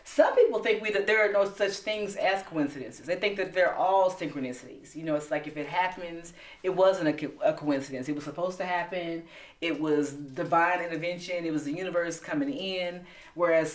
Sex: female